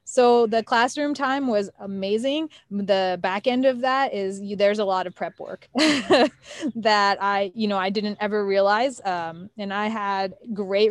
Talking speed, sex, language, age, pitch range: 175 wpm, female, English, 20-39, 185-215 Hz